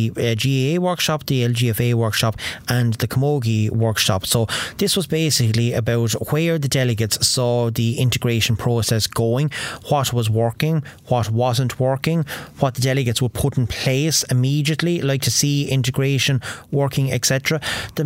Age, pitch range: 30-49, 120-140 Hz